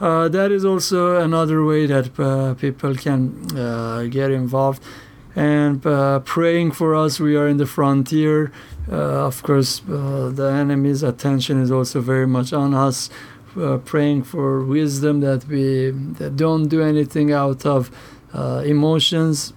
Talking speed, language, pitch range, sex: 150 wpm, English, 130-155 Hz, male